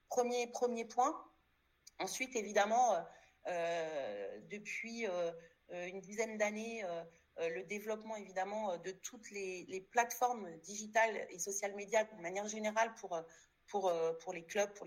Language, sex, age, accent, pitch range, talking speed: French, female, 40-59, French, 185-225 Hz, 135 wpm